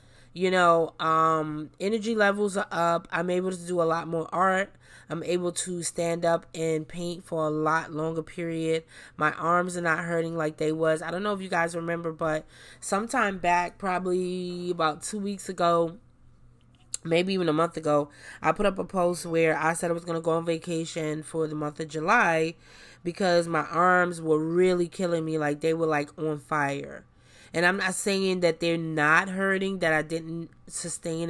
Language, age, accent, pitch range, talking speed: English, 20-39, American, 160-185 Hz, 190 wpm